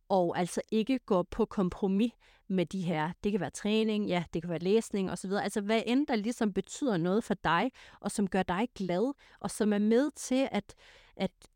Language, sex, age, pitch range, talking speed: Danish, female, 30-49, 180-230 Hz, 210 wpm